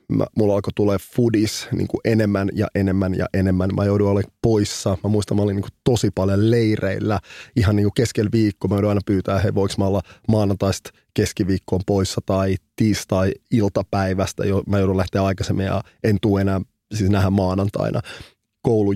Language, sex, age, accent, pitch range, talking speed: Finnish, male, 20-39, native, 95-110 Hz, 165 wpm